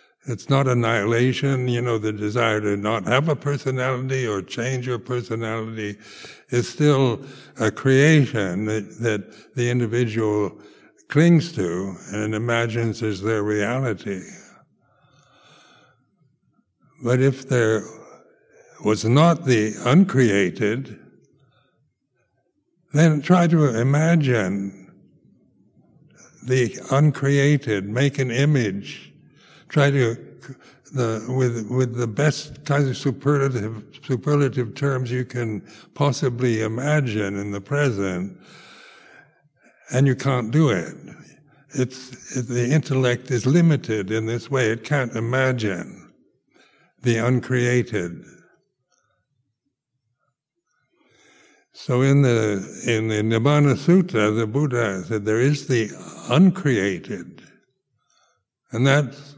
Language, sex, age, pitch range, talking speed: English, male, 60-79, 110-140 Hz, 100 wpm